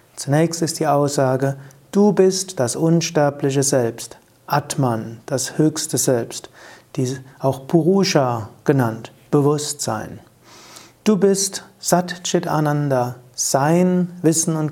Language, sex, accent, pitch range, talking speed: German, male, German, 135-175 Hz, 100 wpm